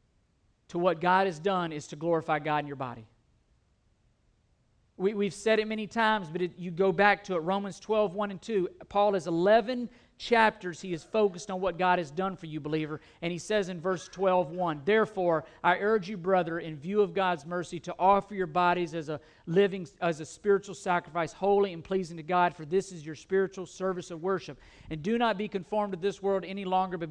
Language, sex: English, male